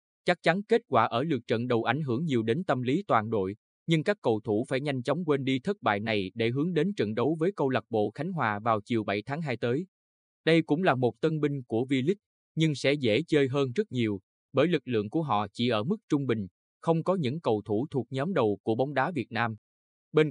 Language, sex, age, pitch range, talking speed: Vietnamese, male, 20-39, 110-155 Hz, 250 wpm